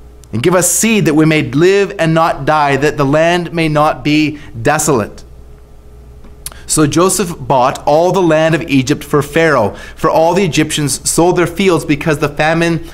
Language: English